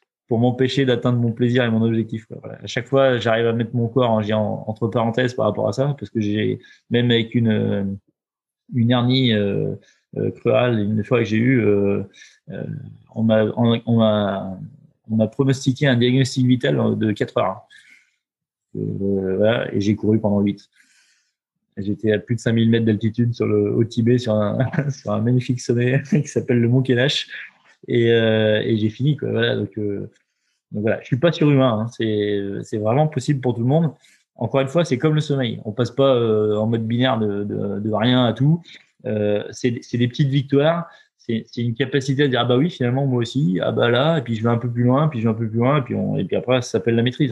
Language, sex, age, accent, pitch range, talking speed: French, male, 20-39, French, 110-130 Hz, 225 wpm